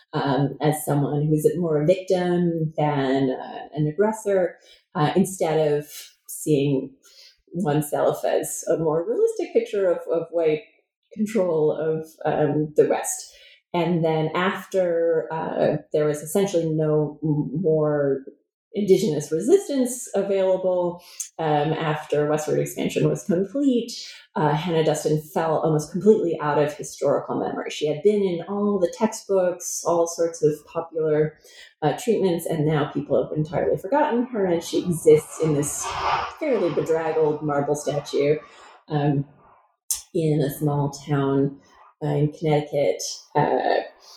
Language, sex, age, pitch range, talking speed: English, female, 30-49, 150-195 Hz, 130 wpm